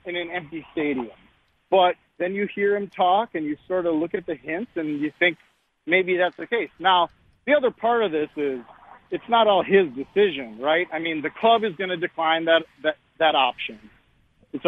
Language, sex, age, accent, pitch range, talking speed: English, male, 40-59, American, 145-195 Hz, 210 wpm